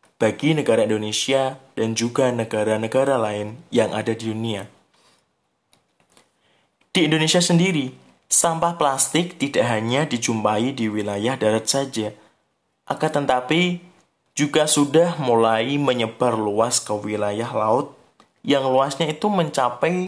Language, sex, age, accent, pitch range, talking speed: Indonesian, male, 20-39, native, 110-155 Hz, 110 wpm